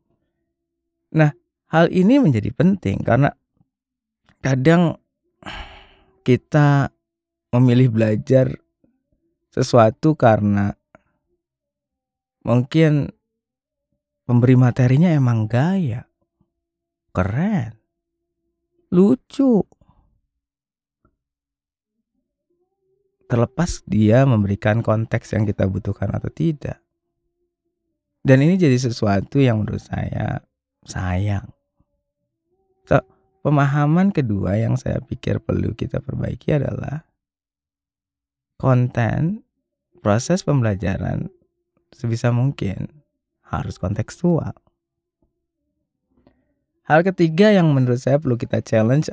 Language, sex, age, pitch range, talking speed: Indonesian, male, 20-39, 105-170 Hz, 75 wpm